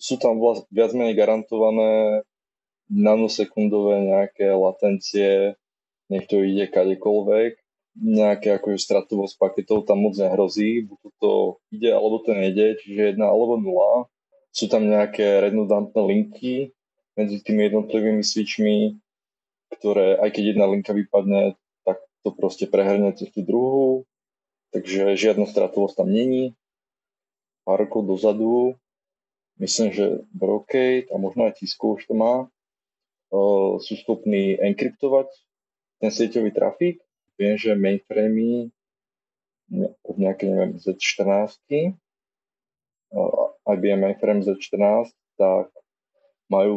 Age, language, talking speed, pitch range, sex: 20-39, Slovak, 105 wpm, 100-125 Hz, male